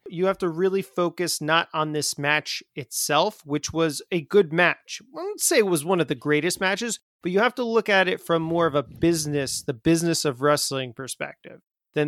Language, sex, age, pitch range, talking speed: English, male, 30-49, 150-185 Hz, 215 wpm